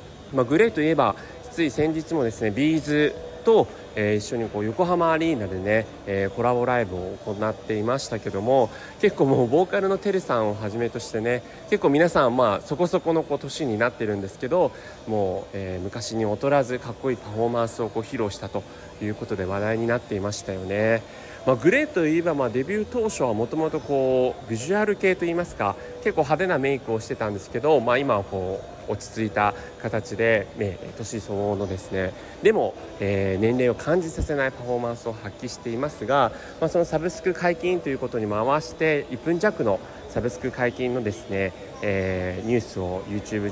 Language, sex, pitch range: Japanese, male, 105-150 Hz